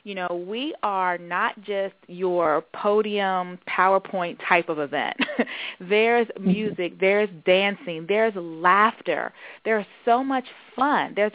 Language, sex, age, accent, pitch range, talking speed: English, female, 30-49, American, 180-220 Hz, 120 wpm